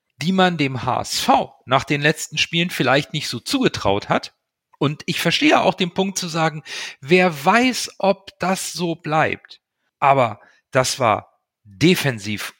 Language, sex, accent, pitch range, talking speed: German, male, German, 130-175 Hz, 150 wpm